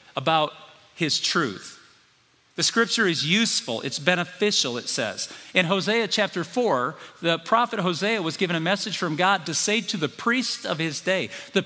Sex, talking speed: male, 170 wpm